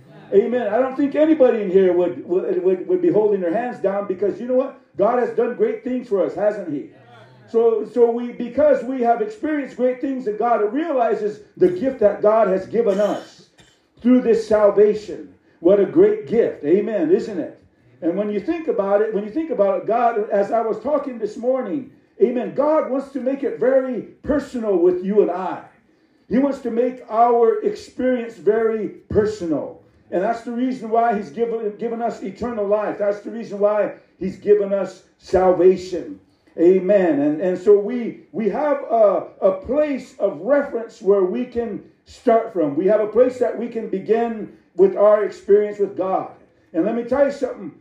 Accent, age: American, 50-69